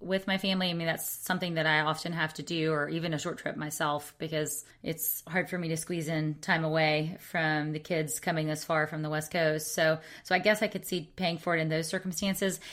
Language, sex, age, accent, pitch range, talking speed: English, female, 30-49, American, 160-205 Hz, 245 wpm